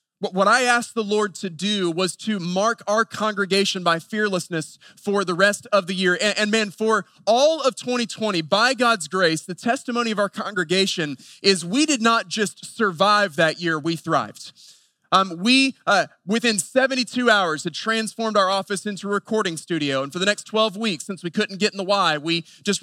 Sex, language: male, English